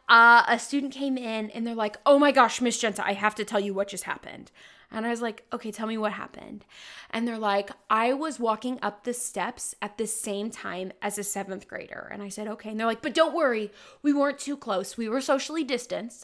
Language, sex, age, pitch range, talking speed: English, female, 20-39, 205-265 Hz, 240 wpm